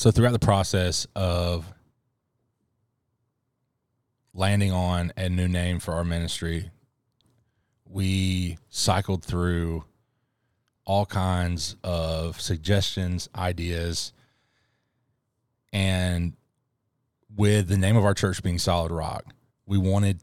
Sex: male